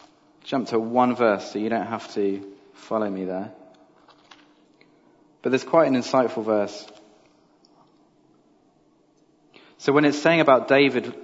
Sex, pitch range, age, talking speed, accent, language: male, 100-130 Hz, 40-59, 130 wpm, British, English